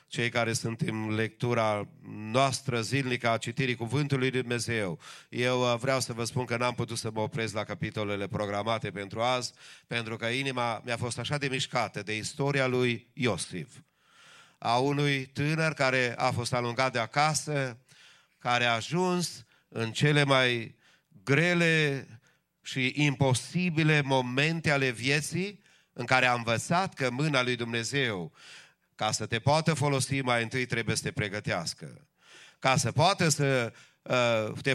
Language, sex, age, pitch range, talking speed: English, male, 30-49, 115-145 Hz, 150 wpm